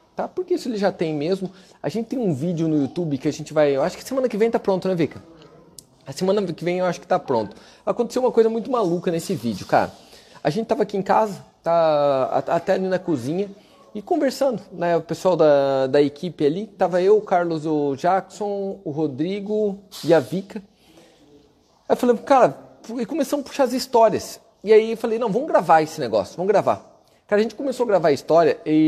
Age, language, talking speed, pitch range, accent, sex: 30-49, Portuguese, 220 wpm, 160-210 Hz, Brazilian, male